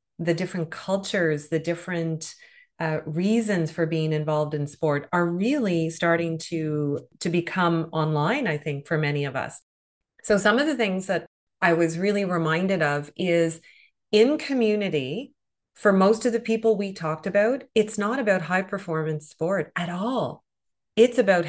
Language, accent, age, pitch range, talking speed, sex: English, American, 30-49, 160-205 Hz, 160 wpm, female